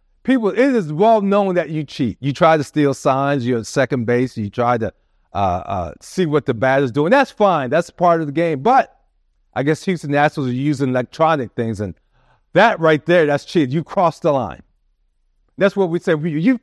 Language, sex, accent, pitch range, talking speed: English, male, American, 145-210 Hz, 215 wpm